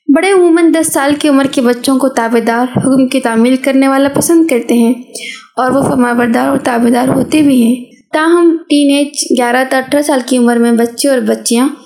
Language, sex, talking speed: Urdu, female, 200 wpm